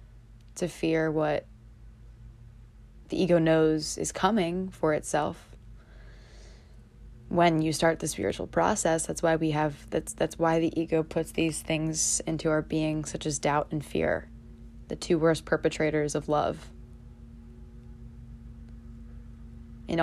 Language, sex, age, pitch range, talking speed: English, female, 20-39, 115-160 Hz, 130 wpm